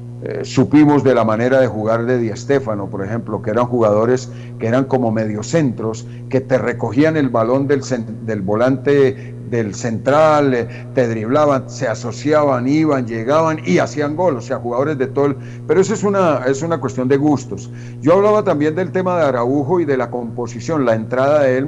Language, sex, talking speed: Spanish, male, 195 wpm